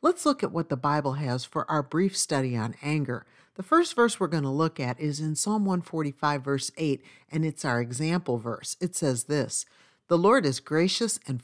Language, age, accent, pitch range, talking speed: English, 50-69, American, 140-210 Hz, 210 wpm